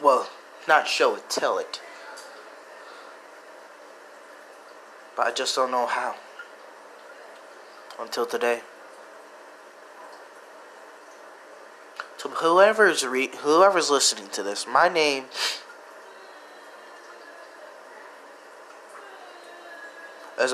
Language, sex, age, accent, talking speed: English, male, 20-39, American, 70 wpm